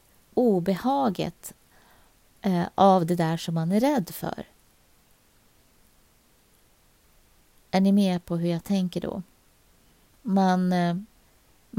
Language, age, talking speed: Swedish, 30-49, 100 wpm